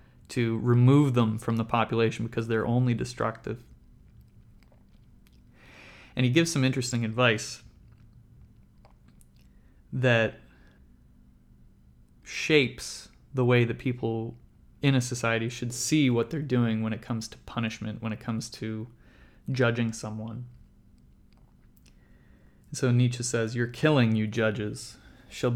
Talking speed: 115 wpm